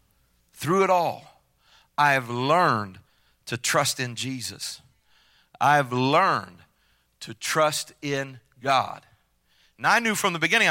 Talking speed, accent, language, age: 125 wpm, American, English, 50-69